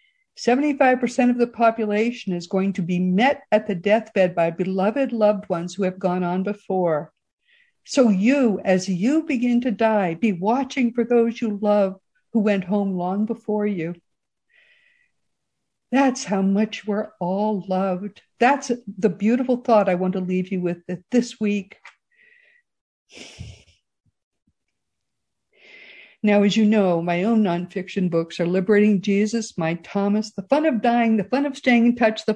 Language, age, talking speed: English, 60-79, 155 wpm